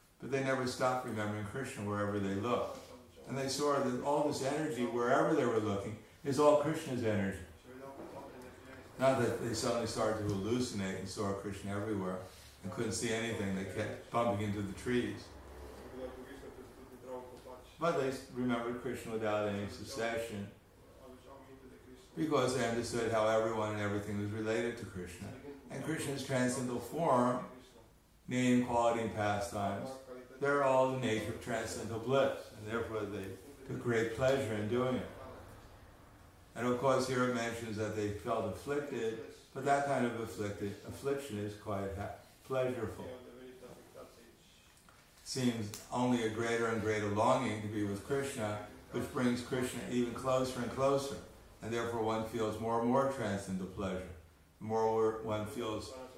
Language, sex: English, male